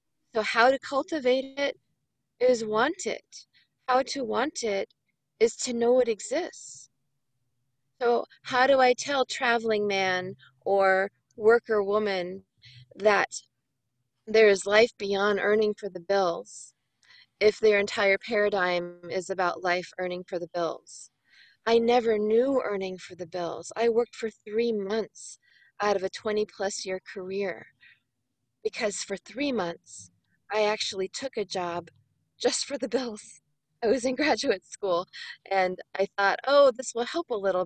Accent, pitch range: American, 185-250 Hz